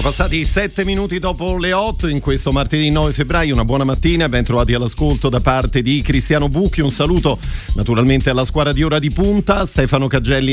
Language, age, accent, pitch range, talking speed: Italian, 40-59, native, 120-150 Hz, 180 wpm